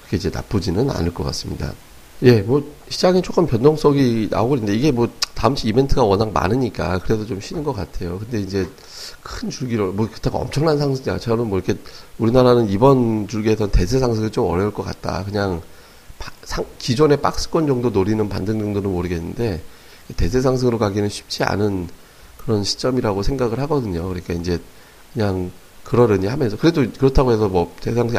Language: Korean